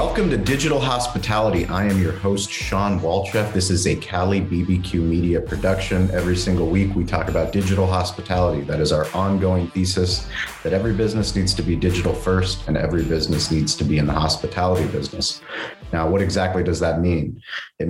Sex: male